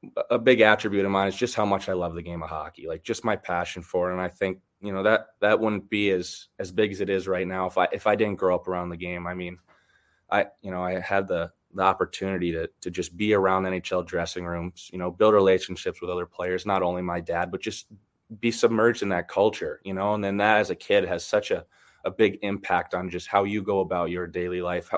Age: 20-39